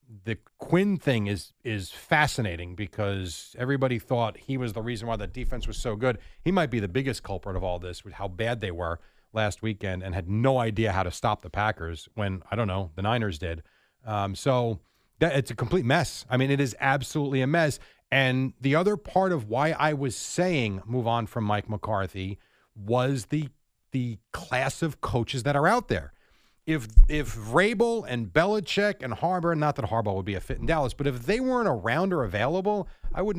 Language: English